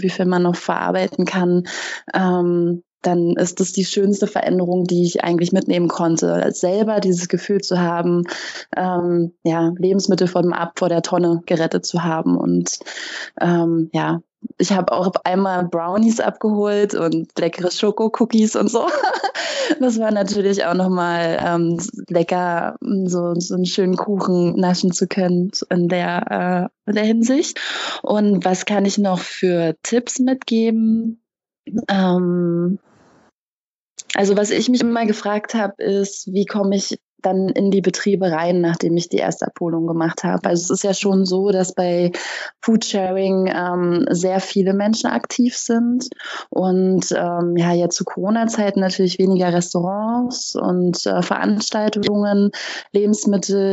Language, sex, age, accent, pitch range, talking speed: German, female, 20-39, German, 175-205 Hz, 145 wpm